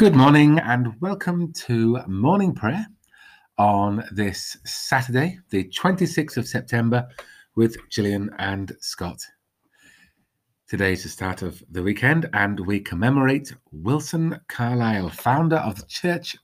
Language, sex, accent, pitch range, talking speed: English, male, British, 95-135 Hz, 125 wpm